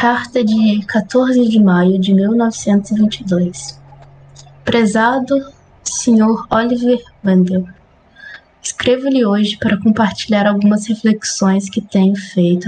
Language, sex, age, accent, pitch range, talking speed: Portuguese, female, 20-39, Brazilian, 195-230 Hz, 95 wpm